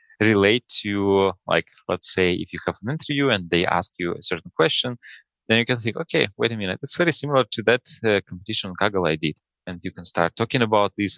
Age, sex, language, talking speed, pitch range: 20-39, male, English, 230 wpm, 90-115 Hz